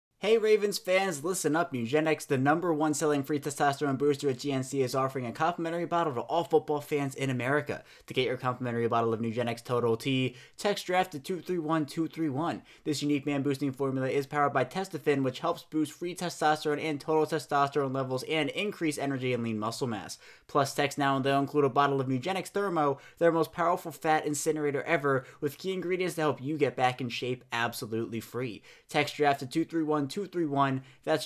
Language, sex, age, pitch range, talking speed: English, male, 20-39, 135-160 Hz, 195 wpm